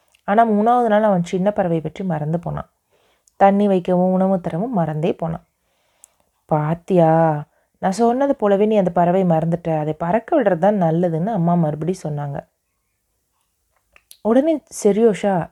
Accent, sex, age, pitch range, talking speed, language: native, female, 30-49, 165-215 Hz, 125 wpm, Tamil